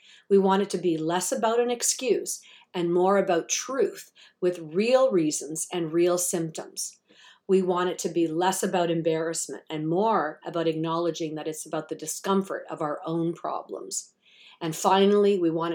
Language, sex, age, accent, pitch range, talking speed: English, female, 50-69, American, 165-200 Hz, 170 wpm